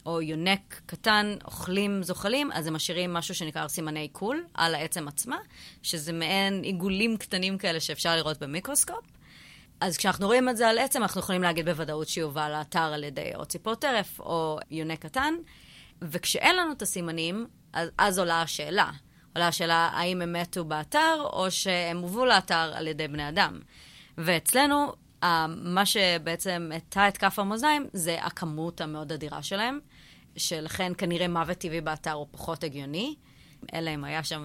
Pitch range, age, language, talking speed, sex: 165-205 Hz, 30-49, Hebrew, 155 wpm, female